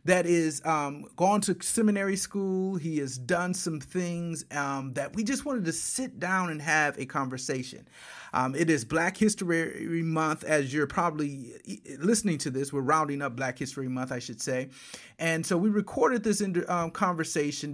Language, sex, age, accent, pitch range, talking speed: English, male, 30-49, American, 150-195 Hz, 175 wpm